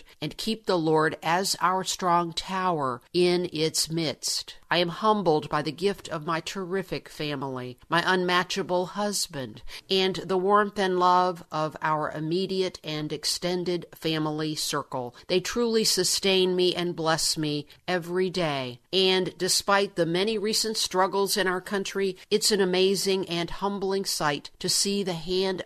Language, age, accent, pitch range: English, 50-69, American, 160-190 Hz